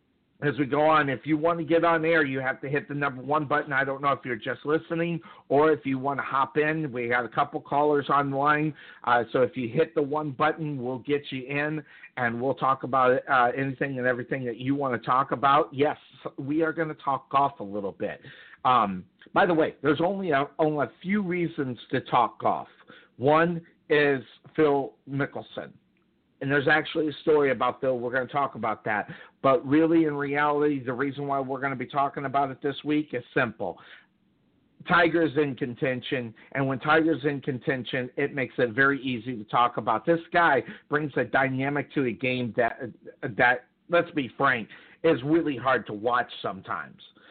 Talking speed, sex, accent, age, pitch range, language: 200 wpm, male, American, 50-69, 130-155 Hz, English